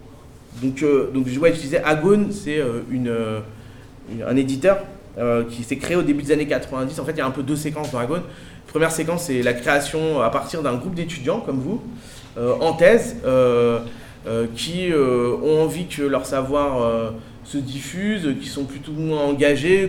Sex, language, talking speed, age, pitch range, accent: male, French, 210 wpm, 20-39, 115-155 Hz, French